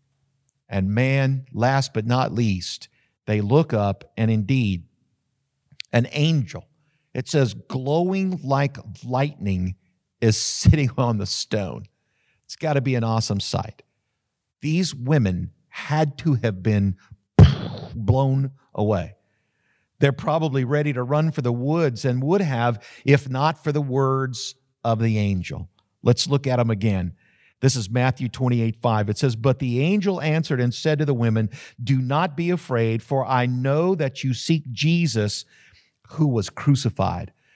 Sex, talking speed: male, 145 wpm